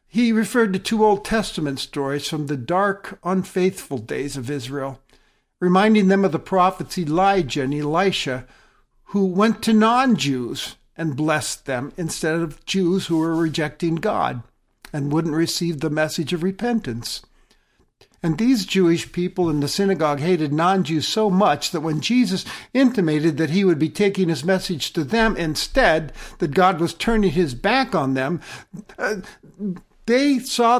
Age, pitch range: 60-79, 150-200 Hz